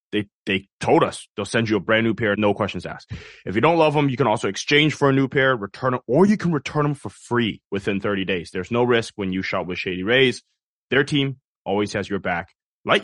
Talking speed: 255 wpm